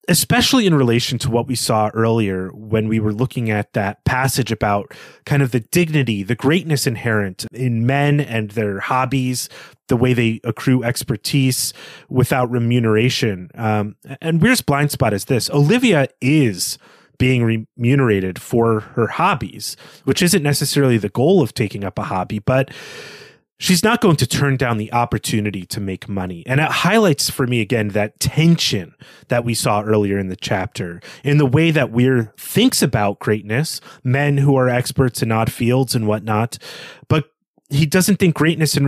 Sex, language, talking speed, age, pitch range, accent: male, English, 170 wpm, 30-49, 110-145 Hz, American